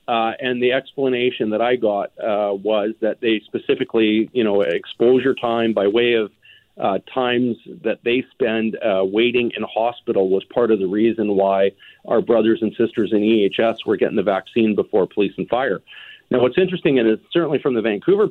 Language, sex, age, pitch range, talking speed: English, male, 40-59, 110-125 Hz, 185 wpm